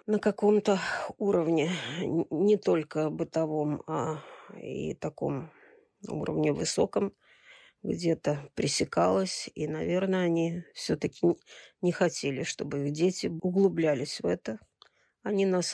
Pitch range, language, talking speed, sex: 160-195 Hz, Russian, 105 wpm, female